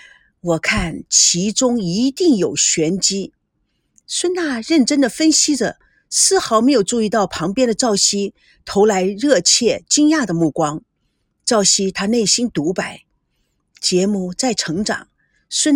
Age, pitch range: 50-69, 195-305 Hz